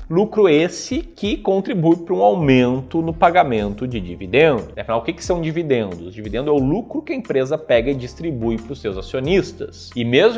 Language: Portuguese